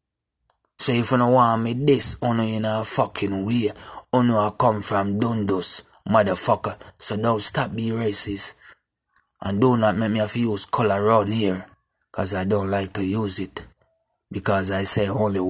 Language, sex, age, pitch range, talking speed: English, male, 30-49, 95-110 Hz, 185 wpm